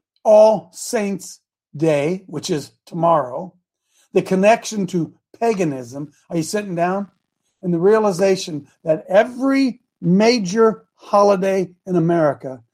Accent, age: American, 50-69